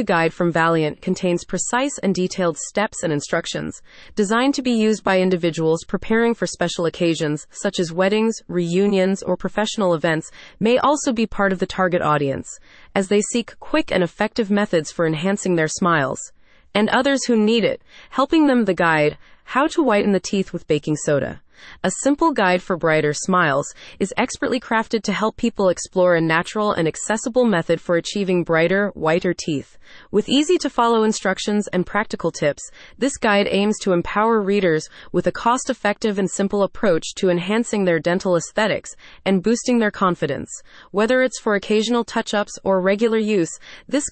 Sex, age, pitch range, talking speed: female, 30-49, 175-225 Hz, 170 wpm